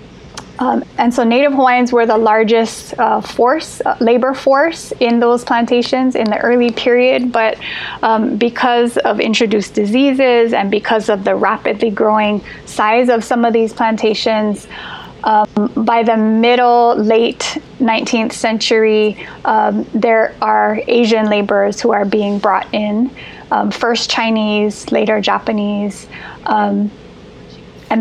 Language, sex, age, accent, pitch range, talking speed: English, female, 10-29, American, 215-240 Hz, 135 wpm